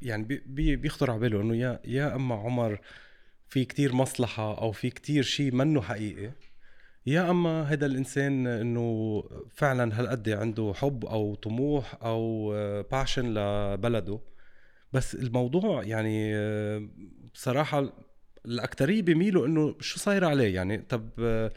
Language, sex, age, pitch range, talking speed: Arabic, male, 30-49, 110-145 Hz, 120 wpm